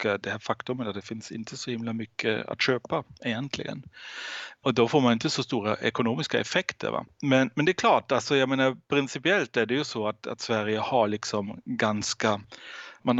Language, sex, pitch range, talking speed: Swedish, male, 110-135 Hz, 195 wpm